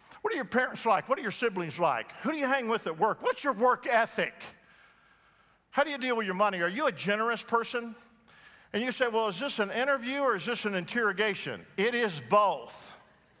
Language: English